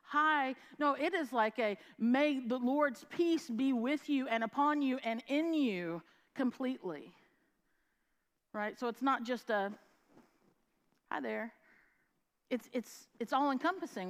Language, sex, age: English, female, 50-69